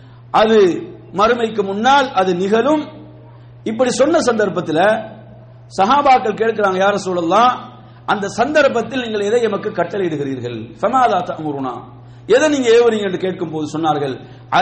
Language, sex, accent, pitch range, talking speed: English, male, Indian, 140-225 Hz, 95 wpm